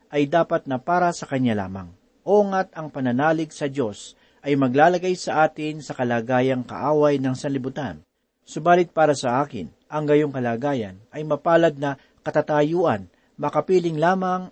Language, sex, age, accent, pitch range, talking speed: Filipino, male, 40-59, native, 130-165 Hz, 140 wpm